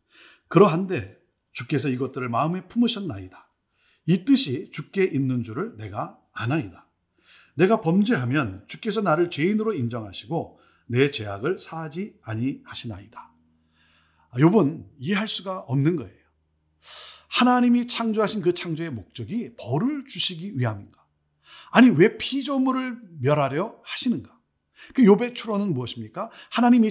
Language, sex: Korean, male